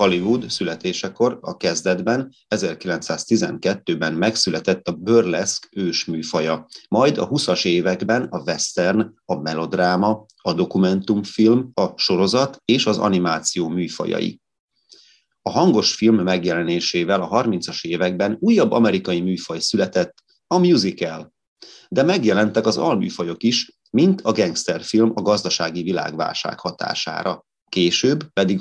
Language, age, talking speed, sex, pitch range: Hungarian, 30-49, 110 wpm, male, 85-110 Hz